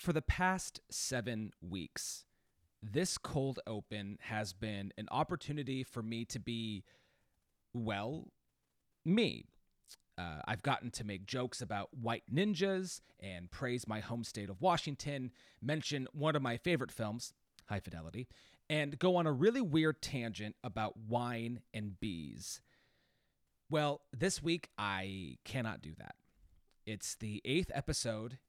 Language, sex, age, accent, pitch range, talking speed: English, male, 30-49, American, 110-145 Hz, 135 wpm